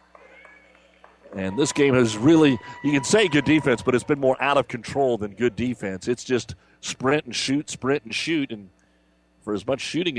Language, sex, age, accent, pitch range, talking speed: English, male, 50-69, American, 125-185 Hz, 195 wpm